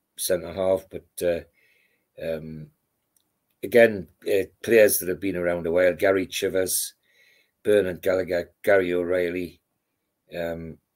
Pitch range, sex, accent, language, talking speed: 85-105 Hz, male, British, English, 115 wpm